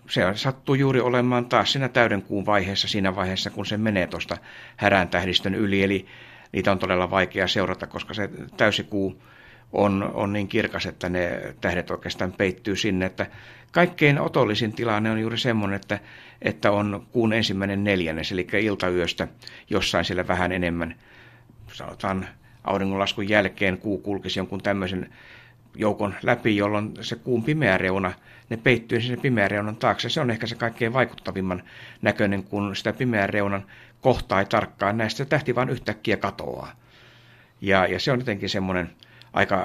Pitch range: 95-115 Hz